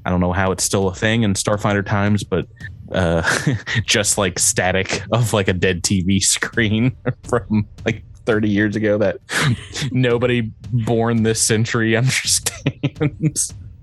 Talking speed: 145 wpm